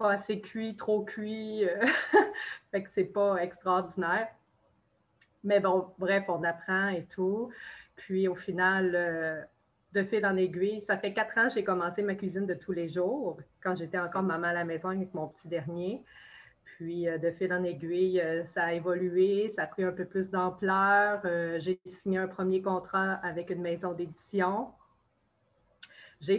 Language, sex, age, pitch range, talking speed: French, female, 30-49, 180-210 Hz, 165 wpm